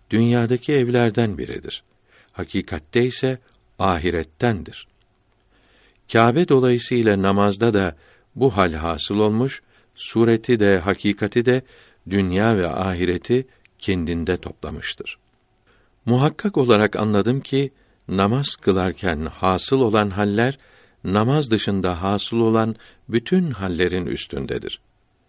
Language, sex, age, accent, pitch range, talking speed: Turkish, male, 60-79, native, 90-120 Hz, 95 wpm